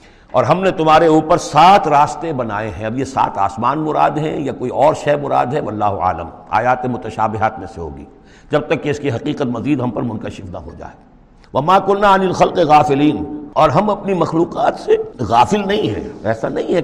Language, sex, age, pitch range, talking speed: Urdu, male, 60-79, 110-155 Hz, 205 wpm